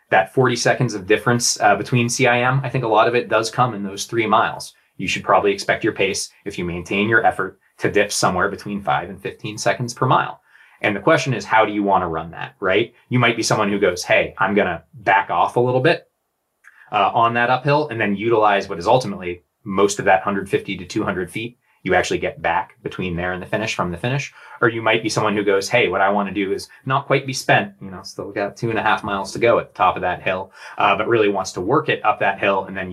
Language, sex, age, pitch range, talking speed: English, male, 20-39, 95-120 Hz, 260 wpm